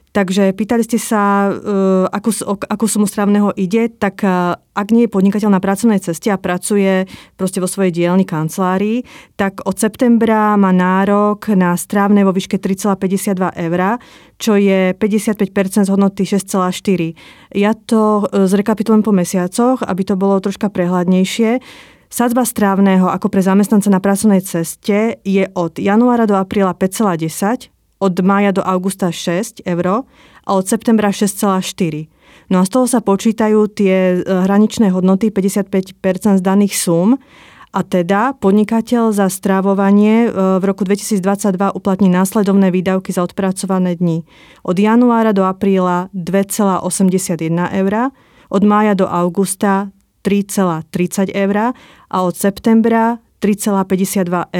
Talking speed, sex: 130 wpm, female